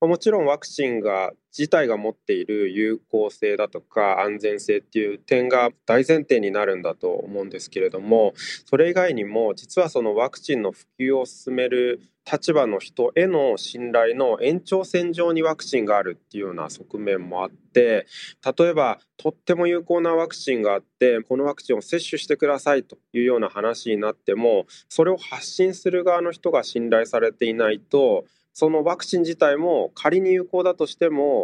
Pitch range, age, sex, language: 120-190 Hz, 20-39, male, Japanese